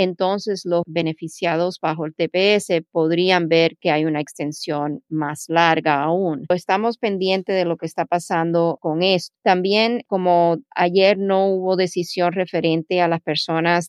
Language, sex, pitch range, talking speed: Spanish, female, 160-185 Hz, 145 wpm